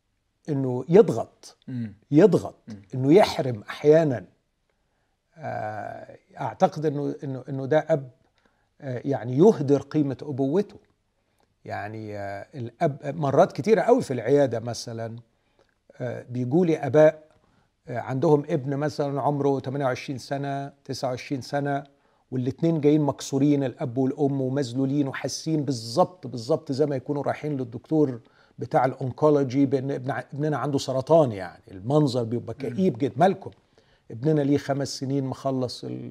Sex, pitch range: male, 125-150 Hz